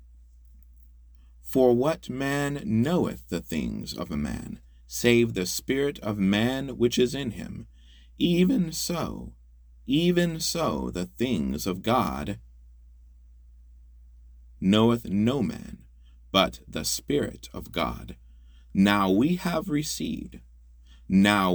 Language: English